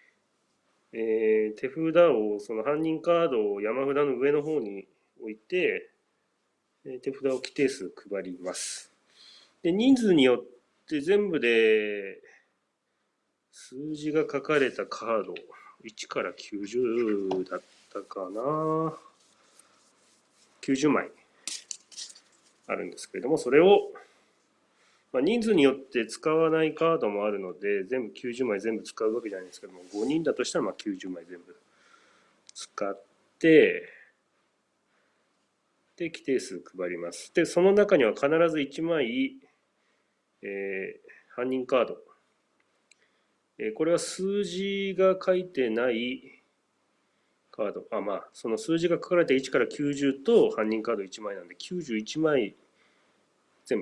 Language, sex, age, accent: Japanese, male, 30-49, native